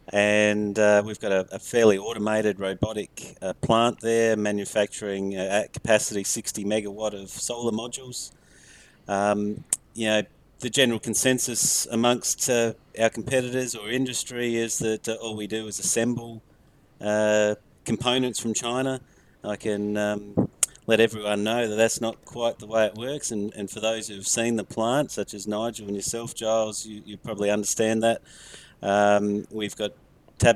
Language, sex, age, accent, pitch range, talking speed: English, male, 30-49, Australian, 100-115 Hz, 160 wpm